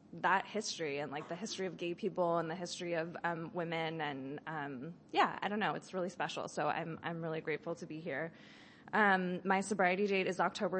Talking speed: 210 wpm